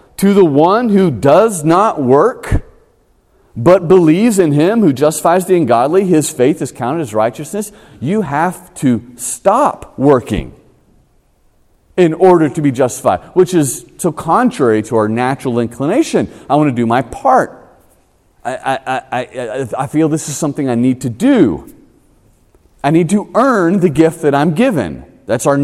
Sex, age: male, 40-59